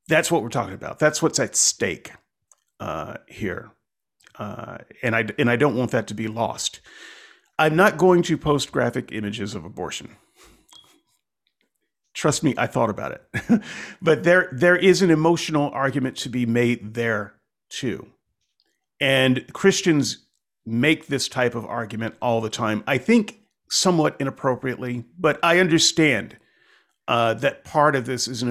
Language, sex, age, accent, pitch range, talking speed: English, male, 40-59, American, 115-160 Hz, 155 wpm